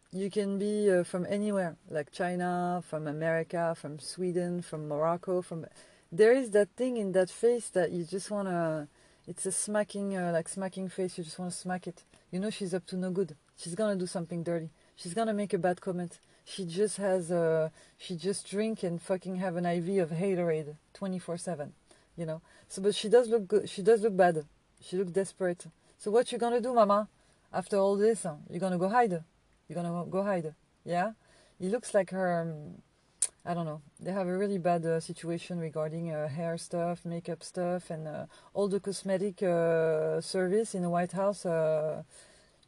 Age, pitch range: 40-59, 165-195 Hz